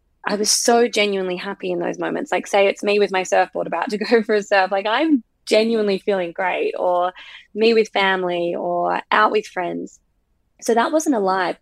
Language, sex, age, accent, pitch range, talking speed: English, female, 20-39, Australian, 180-220 Hz, 200 wpm